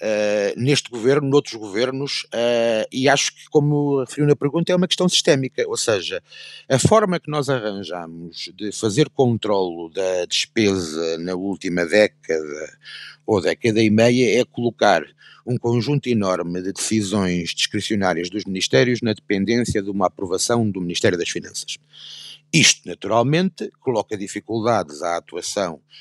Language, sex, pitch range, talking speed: Portuguese, male, 105-150 Hz, 135 wpm